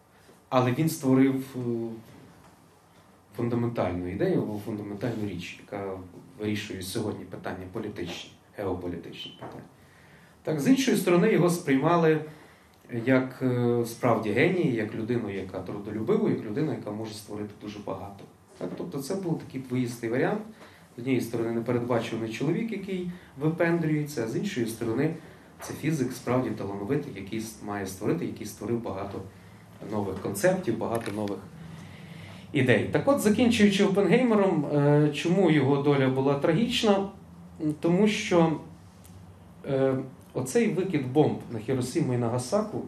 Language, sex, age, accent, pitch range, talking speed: Ukrainian, male, 30-49, native, 105-155 Hz, 120 wpm